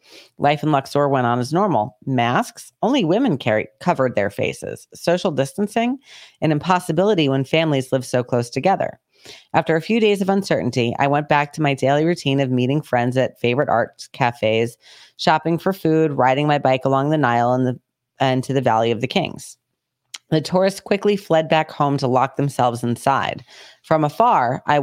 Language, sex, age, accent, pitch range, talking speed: English, female, 30-49, American, 130-170 Hz, 180 wpm